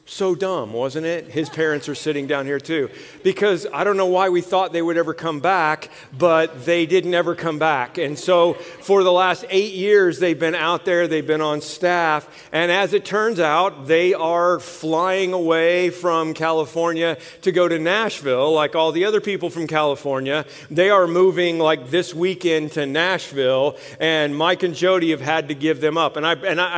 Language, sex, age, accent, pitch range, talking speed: English, male, 50-69, American, 145-175 Hz, 195 wpm